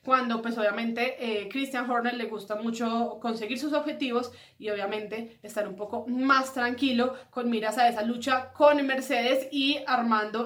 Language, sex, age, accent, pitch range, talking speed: Spanish, female, 20-39, Colombian, 220-265 Hz, 160 wpm